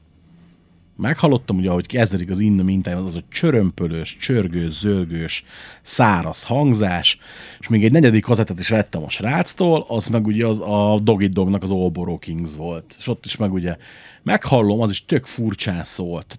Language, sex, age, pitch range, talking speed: Hungarian, male, 30-49, 90-125 Hz, 170 wpm